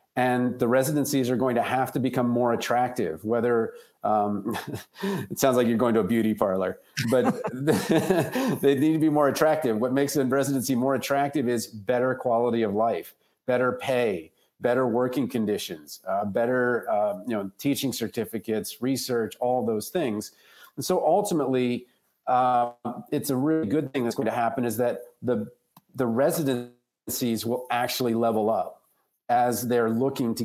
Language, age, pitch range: English, 40-59, 115-135 Hz